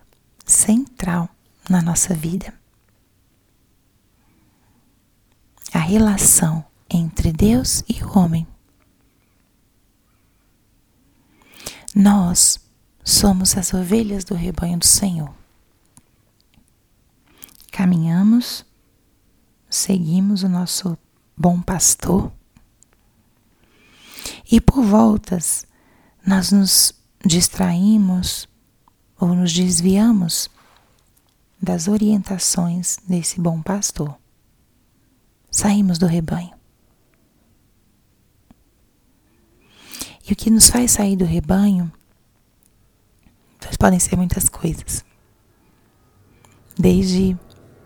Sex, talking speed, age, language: female, 70 wpm, 30-49, Portuguese